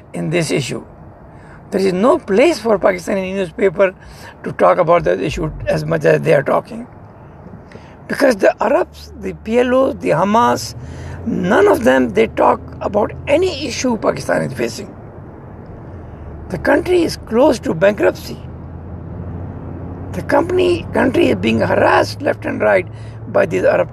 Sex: male